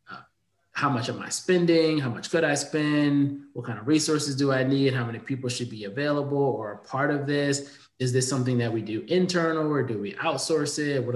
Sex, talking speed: male, 220 wpm